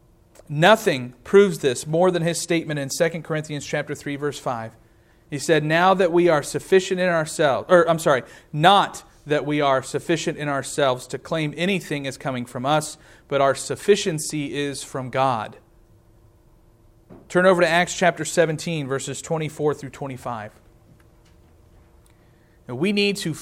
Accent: American